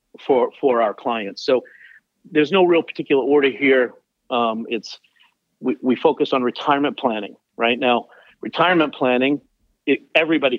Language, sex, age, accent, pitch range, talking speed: English, male, 50-69, American, 125-155 Hz, 140 wpm